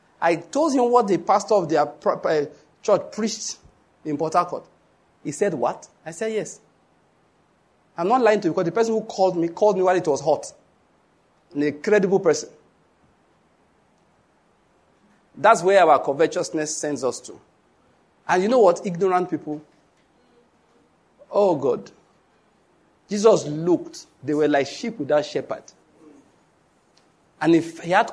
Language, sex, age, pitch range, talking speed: English, male, 50-69, 170-240 Hz, 145 wpm